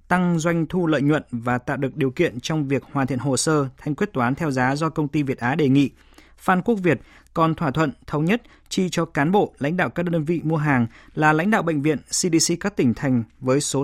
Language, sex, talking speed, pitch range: Vietnamese, male, 250 wpm, 130-170 Hz